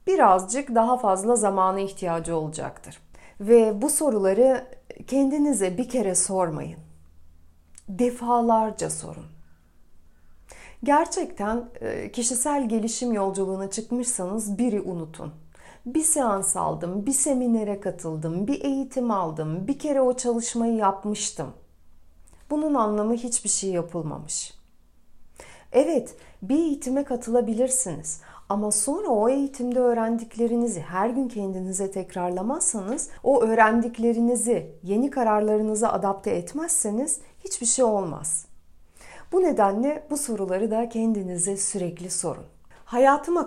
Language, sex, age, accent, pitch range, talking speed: Turkish, female, 40-59, native, 180-250 Hz, 100 wpm